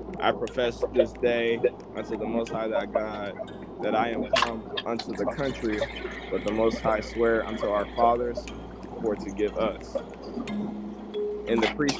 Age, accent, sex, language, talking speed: 20-39, American, male, English, 160 wpm